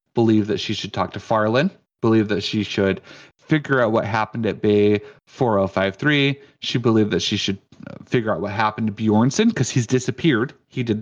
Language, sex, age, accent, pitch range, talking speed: English, male, 30-49, American, 100-130 Hz, 185 wpm